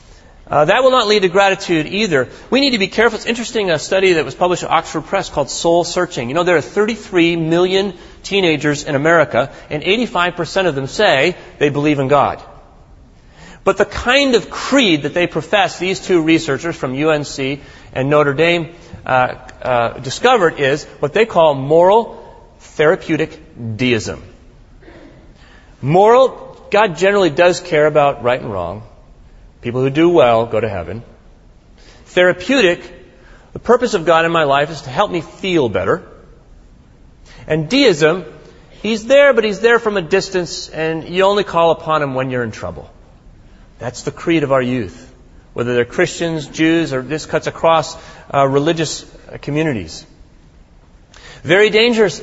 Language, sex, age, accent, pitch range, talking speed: English, male, 30-49, American, 140-190 Hz, 160 wpm